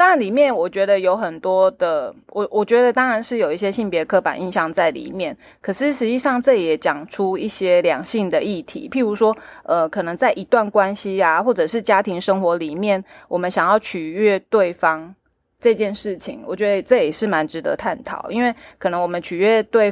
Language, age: Chinese, 20-39